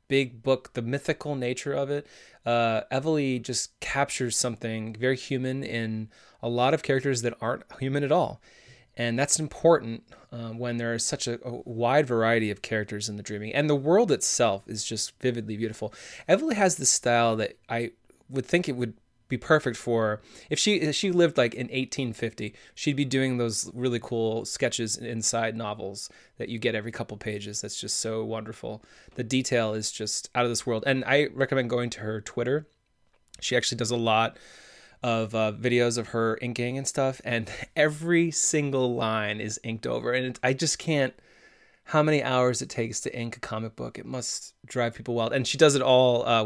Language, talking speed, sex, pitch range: English, 190 wpm, male, 115-135 Hz